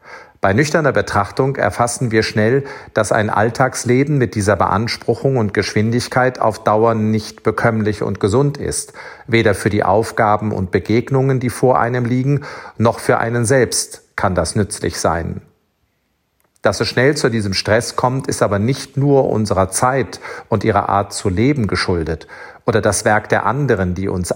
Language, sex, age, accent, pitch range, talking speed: German, male, 50-69, German, 105-130 Hz, 160 wpm